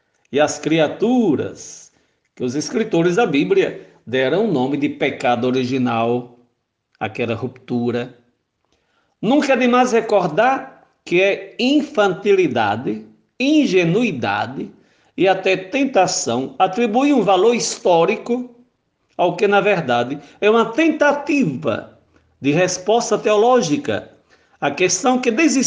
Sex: male